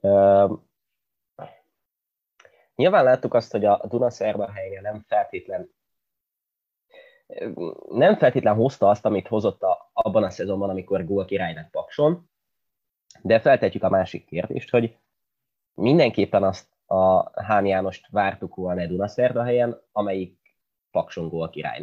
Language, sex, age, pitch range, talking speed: Hungarian, male, 20-39, 95-125 Hz, 120 wpm